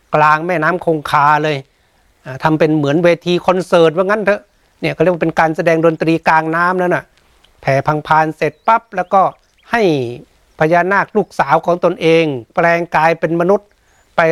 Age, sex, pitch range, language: 60-79, male, 150-180 Hz, Thai